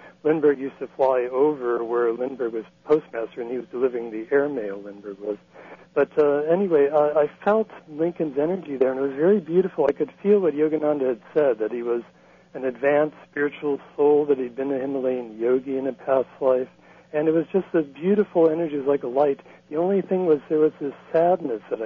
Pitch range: 125-165 Hz